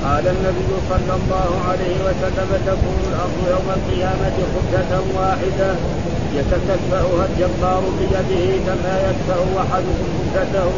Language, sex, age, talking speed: Arabic, male, 50-69, 110 wpm